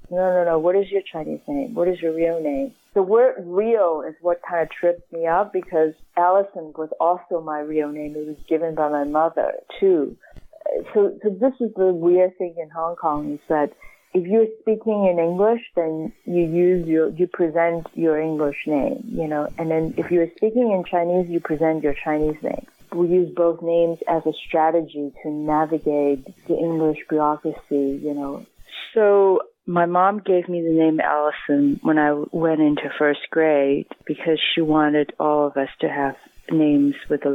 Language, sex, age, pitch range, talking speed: English, female, 40-59, 150-180 Hz, 185 wpm